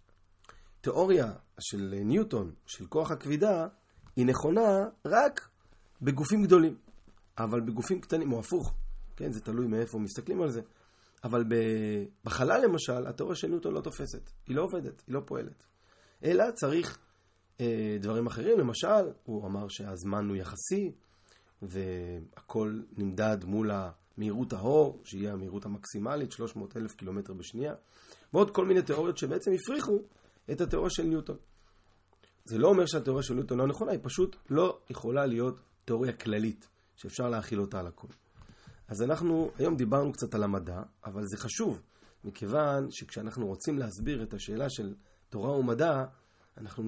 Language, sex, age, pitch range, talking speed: Hebrew, male, 30-49, 100-140 Hz, 140 wpm